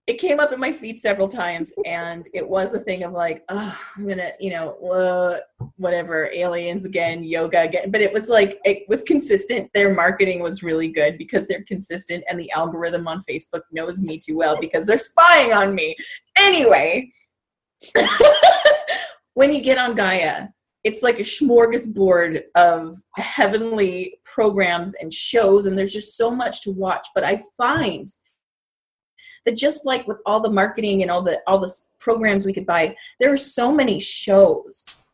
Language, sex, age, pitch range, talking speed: English, female, 20-39, 175-235 Hz, 170 wpm